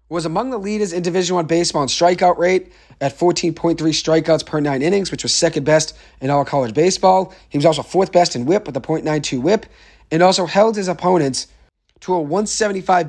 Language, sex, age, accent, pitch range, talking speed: English, male, 40-59, American, 135-190 Hz, 200 wpm